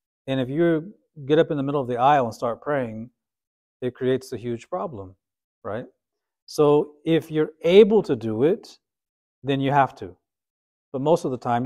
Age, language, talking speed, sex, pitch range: 40-59, English, 185 wpm, male, 120-165 Hz